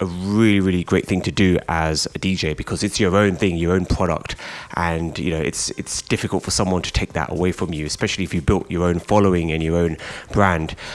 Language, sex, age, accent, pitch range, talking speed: English, male, 20-39, British, 85-105 Hz, 235 wpm